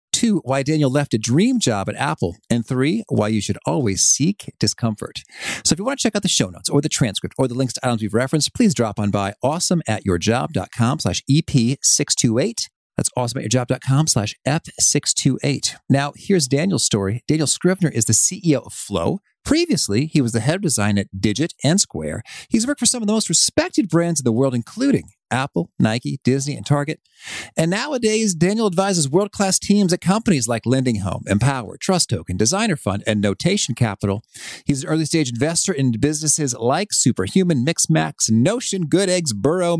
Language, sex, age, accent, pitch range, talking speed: English, male, 40-59, American, 110-170 Hz, 180 wpm